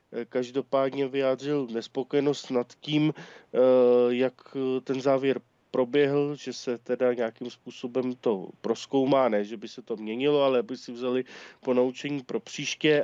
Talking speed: 135 wpm